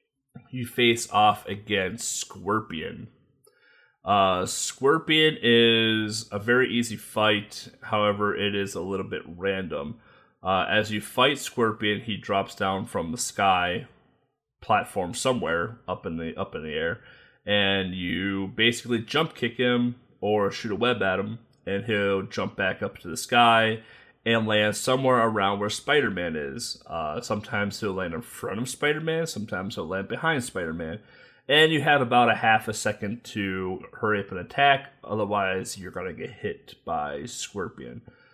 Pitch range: 100-120 Hz